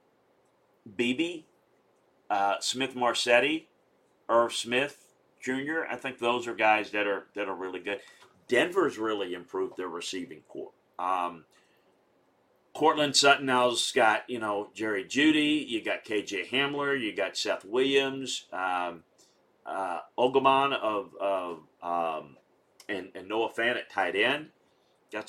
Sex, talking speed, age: male, 135 wpm, 50-69